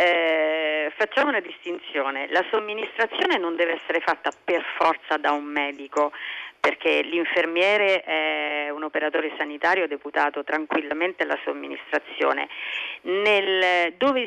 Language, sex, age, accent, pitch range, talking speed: Italian, female, 40-59, native, 155-220 Hz, 110 wpm